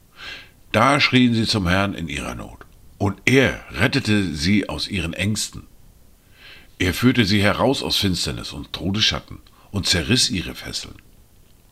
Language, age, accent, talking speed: German, 50-69, German, 140 wpm